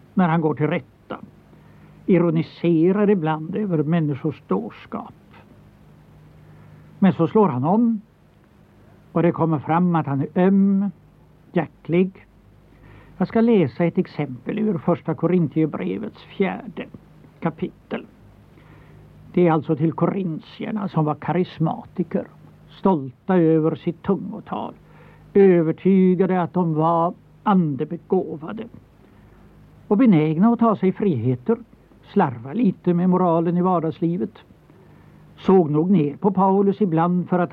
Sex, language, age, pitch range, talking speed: male, Swedish, 60-79, 160-195 Hz, 115 wpm